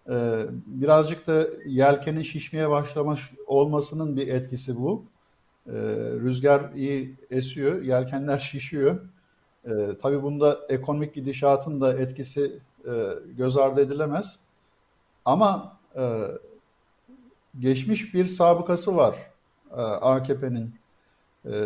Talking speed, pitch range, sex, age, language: 80 wpm, 135-175 Hz, male, 50-69, Turkish